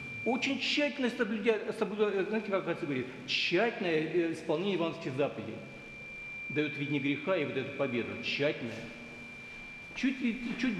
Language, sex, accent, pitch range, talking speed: Russian, male, native, 155-225 Hz, 110 wpm